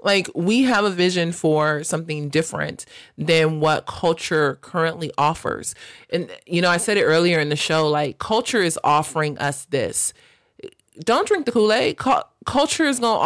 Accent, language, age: American, English, 30-49